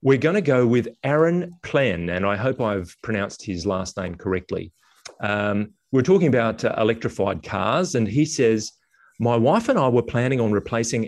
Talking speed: 185 wpm